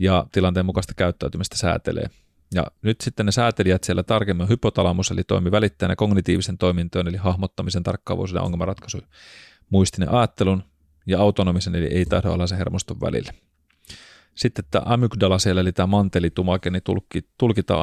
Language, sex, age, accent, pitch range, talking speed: Finnish, male, 30-49, native, 90-105 Hz, 145 wpm